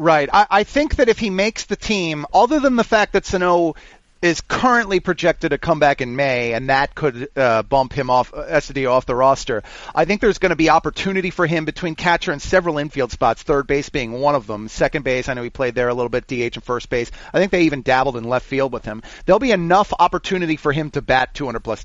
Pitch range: 125-175 Hz